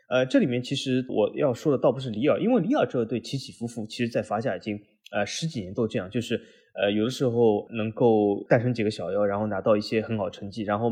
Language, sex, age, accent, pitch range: Chinese, male, 20-39, native, 105-135 Hz